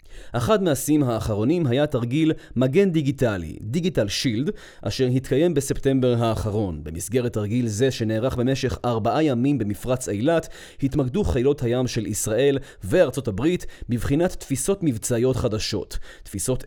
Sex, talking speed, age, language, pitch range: male, 120 wpm, 30-49, Hebrew, 110-150 Hz